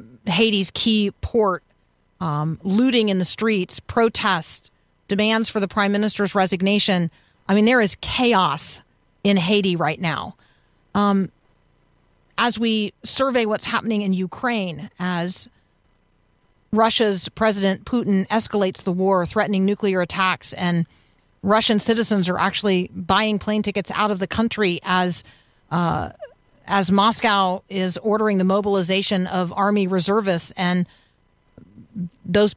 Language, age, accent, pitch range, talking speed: English, 40-59, American, 180-215 Hz, 120 wpm